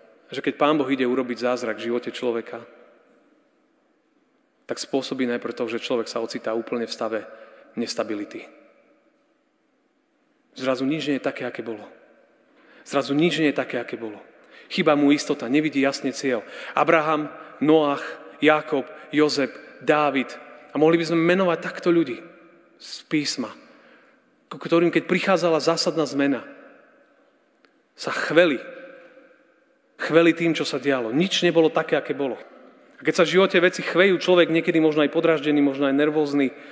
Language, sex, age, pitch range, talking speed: Slovak, male, 30-49, 140-185 Hz, 145 wpm